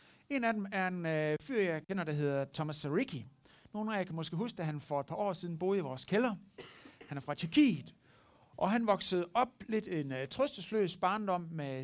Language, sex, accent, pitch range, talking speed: Danish, male, native, 130-185 Hz, 225 wpm